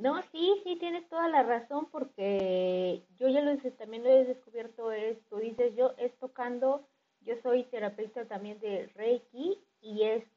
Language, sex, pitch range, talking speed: Spanish, female, 200-250 Hz, 160 wpm